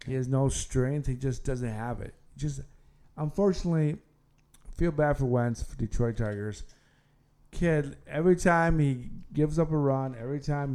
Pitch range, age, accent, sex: 120-150 Hz, 50-69, American, male